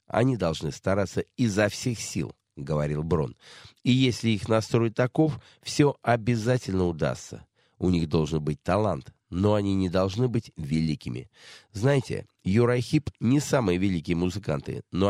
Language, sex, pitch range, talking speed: Russian, male, 85-120 Hz, 135 wpm